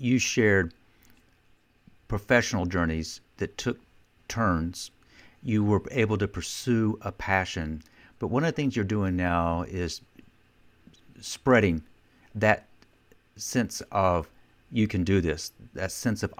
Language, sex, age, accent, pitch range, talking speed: English, male, 50-69, American, 85-110 Hz, 125 wpm